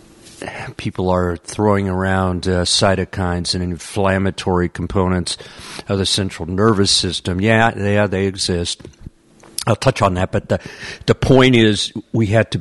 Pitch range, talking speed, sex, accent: 90-110 Hz, 150 wpm, male, American